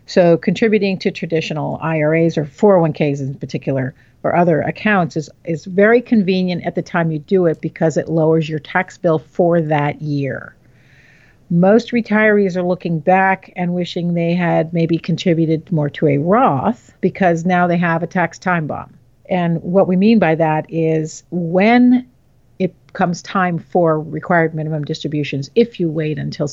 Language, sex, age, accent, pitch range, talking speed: English, female, 50-69, American, 150-185 Hz, 165 wpm